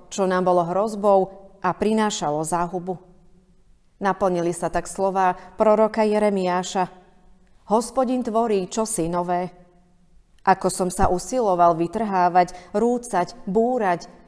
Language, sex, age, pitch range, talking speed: Slovak, female, 40-59, 175-205 Hz, 100 wpm